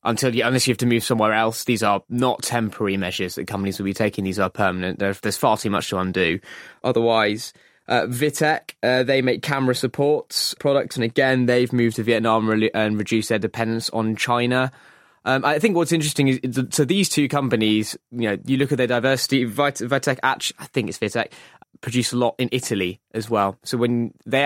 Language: English